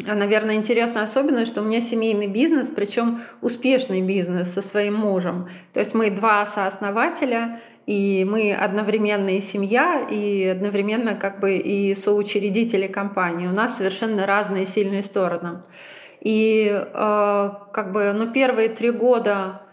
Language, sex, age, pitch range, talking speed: Russian, female, 20-39, 195-225 Hz, 135 wpm